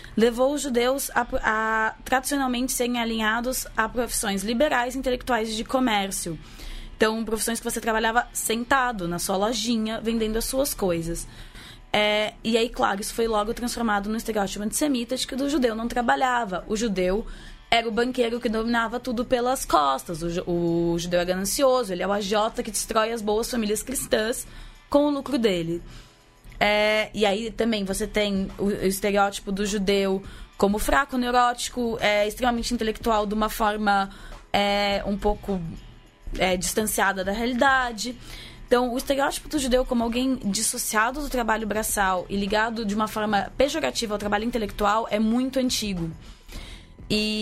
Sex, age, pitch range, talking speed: female, 20-39, 200-245 Hz, 155 wpm